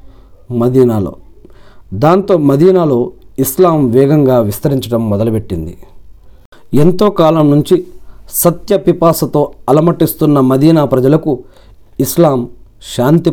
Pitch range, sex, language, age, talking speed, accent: 100-165 Hz, male, Telugu, 40-59, 70 wpm, native